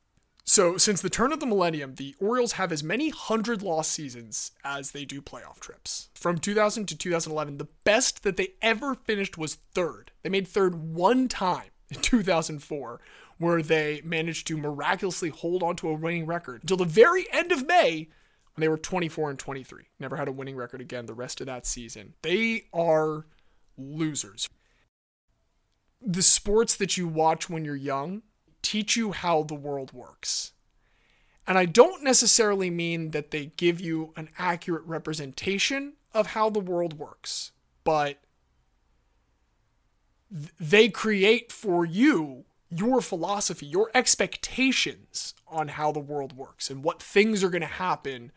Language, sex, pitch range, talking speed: English, male, 150-205 Hz, 160 wpm